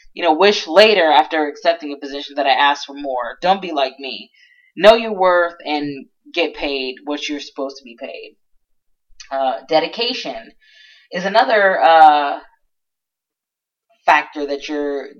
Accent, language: American, English